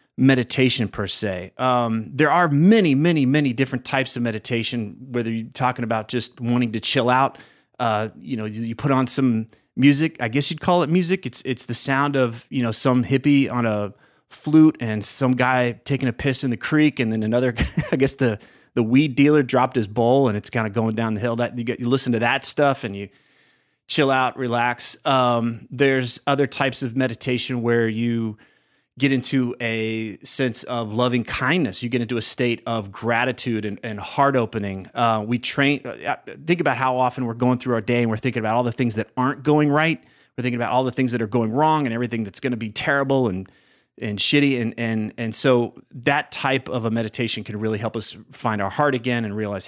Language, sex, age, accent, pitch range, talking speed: English, male, 30-49, American, 110-135 Hz, 215 wpm